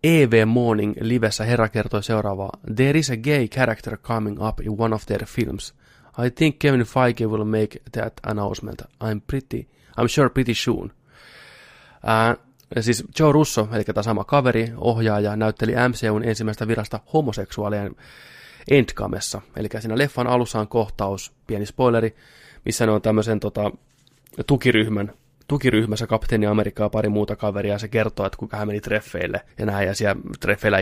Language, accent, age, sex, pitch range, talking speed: Finnish, native, 20-39, male, 100-120 Hz, 155 wpm